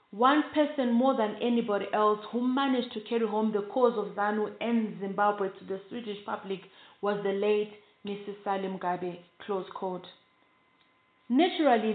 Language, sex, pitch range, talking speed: English, female, 205-240 Hz, 150 wpm